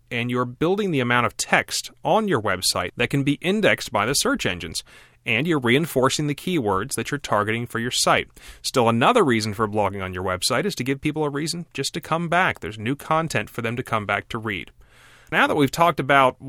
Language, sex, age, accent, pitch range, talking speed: English, male, 30-49, American, 110-140 Hz, 225 wpm